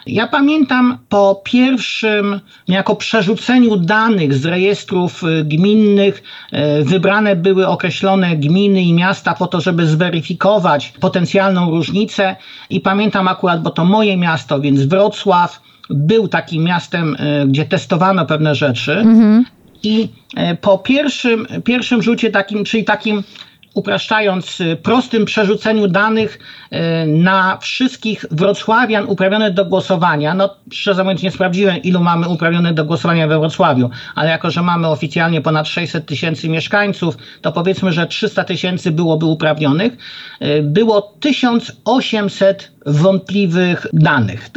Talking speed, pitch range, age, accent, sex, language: 115 wpm, 170-215 Hz, 50-69, native, male, Polish